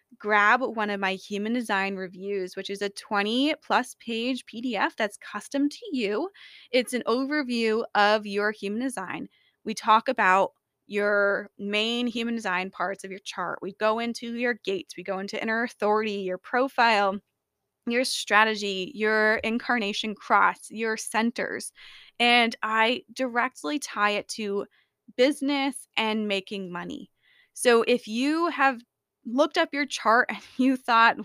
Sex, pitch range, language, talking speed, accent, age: female, 205-250 Hz, English, 145 wpm, American, 20-39